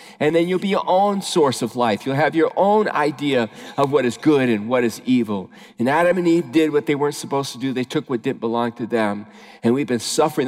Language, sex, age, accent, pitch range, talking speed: English, male, 50-69, American, 140-195 Hz, 250 wpm